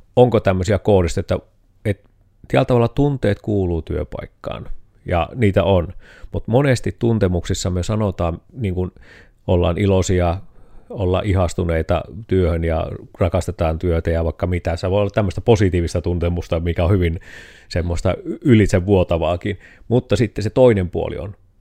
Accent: native